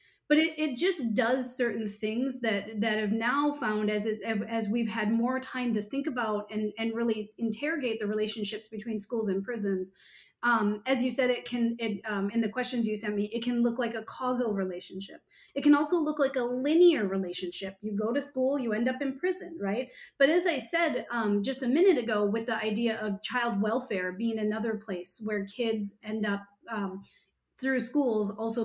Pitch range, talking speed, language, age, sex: 210-255 Hz, 205 wpm, English, 30-49, female